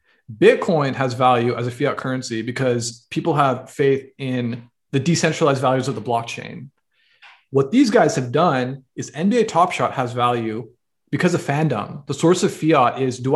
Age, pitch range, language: 30-49, 125-150 Hz, English